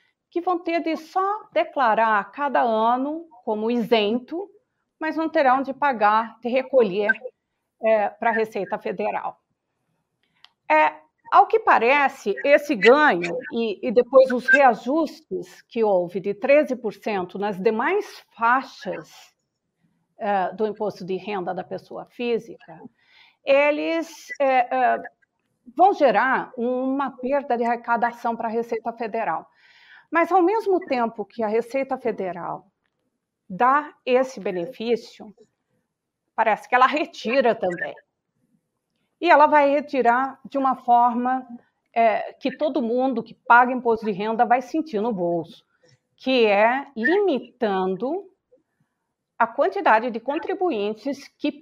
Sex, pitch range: female, 225-295 Hz